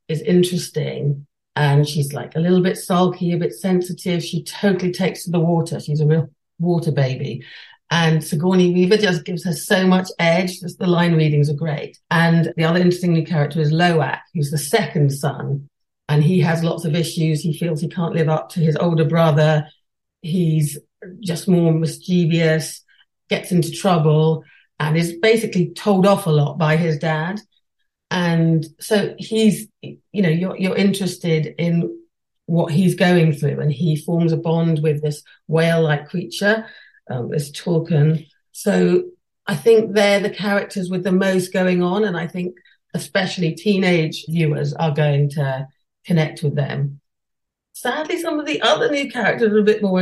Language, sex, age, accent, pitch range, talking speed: English, female, 40-59, British, 155-185 Hz, 170 wpm